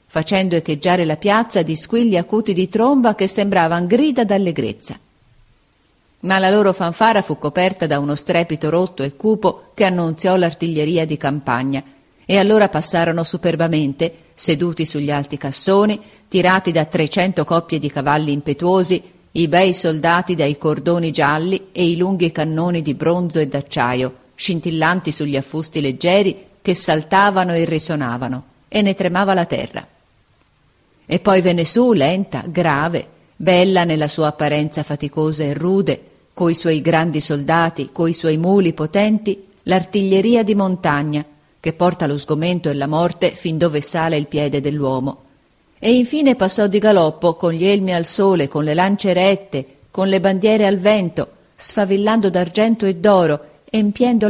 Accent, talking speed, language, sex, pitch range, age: native, 145 wpm, Italian, female, 155-195 Hz, 40-59